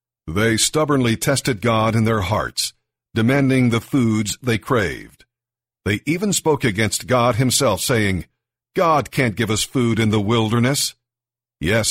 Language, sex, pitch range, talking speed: English, male, 105-130 Hz, 140 wpm